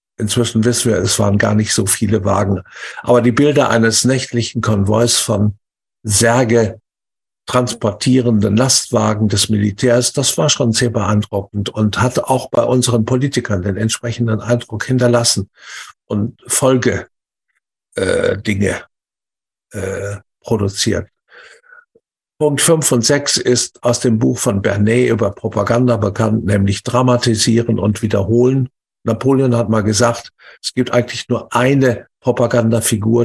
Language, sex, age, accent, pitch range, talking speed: German, male, 50-69, German, 110-125 Hz, 125 wpm